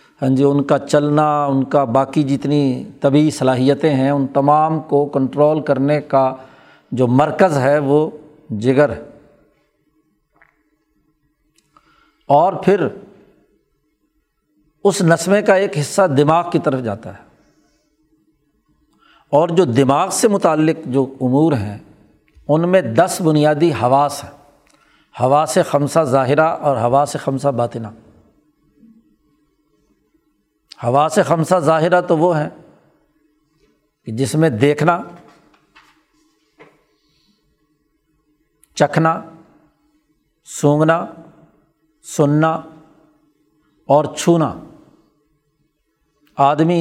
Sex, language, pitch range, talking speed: male, Urdu, 135-155 Hz, 95 wpm